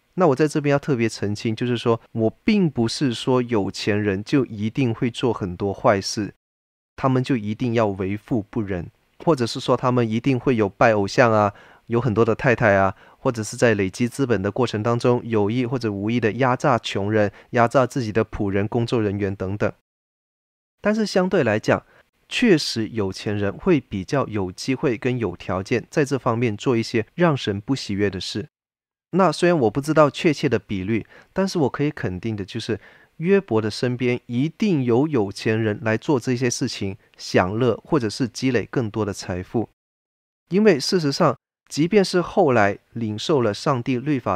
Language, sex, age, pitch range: Chinese, male, 20-39, 105-135 Hz